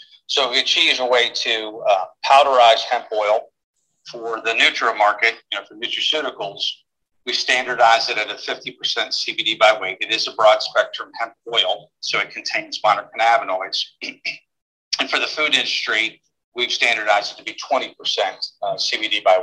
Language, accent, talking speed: English, American, 165 wpm